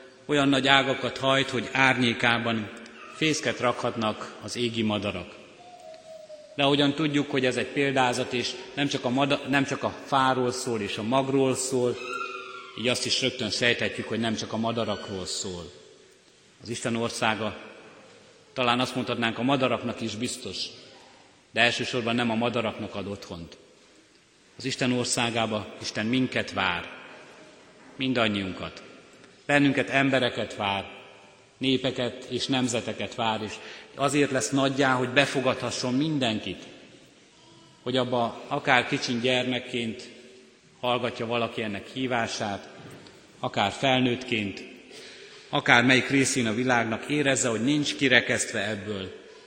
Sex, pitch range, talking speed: male, 110-135 Hz, 120 wpm